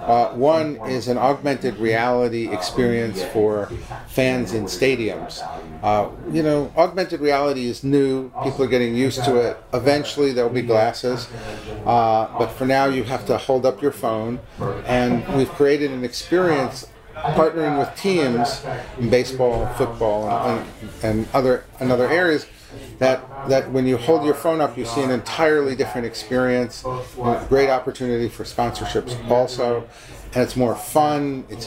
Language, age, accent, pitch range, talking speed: English, 40-59, American, 110-135 Hz, 155 wpm